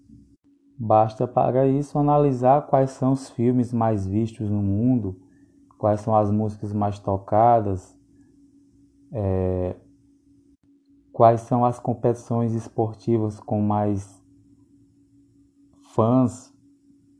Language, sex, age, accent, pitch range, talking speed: Portuguese, male, 20-39, Brazilian, 110-140 Hz, 90 wpm